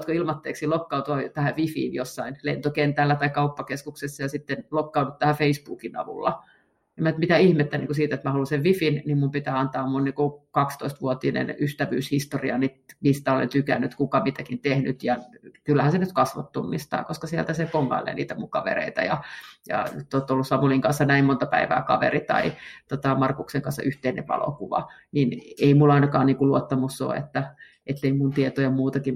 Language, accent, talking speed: Finnish, native, 170 wpm